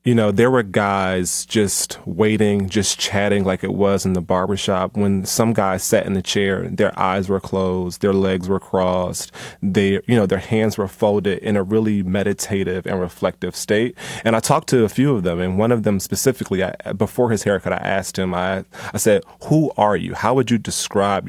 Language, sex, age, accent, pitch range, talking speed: English, male, 30-49, American, 95-110 Hz, 210 wpm